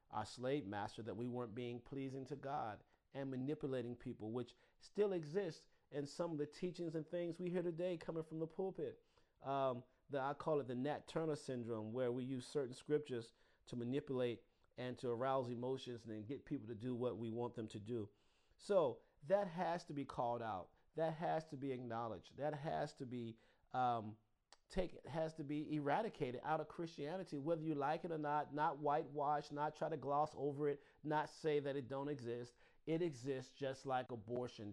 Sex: male